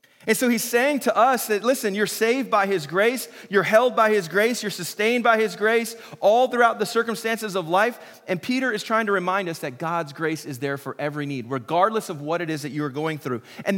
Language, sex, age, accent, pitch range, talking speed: English, male, 30-49, American, 155-215 Hz, 240 wpm